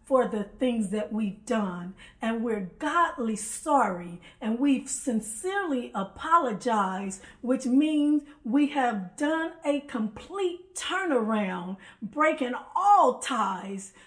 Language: English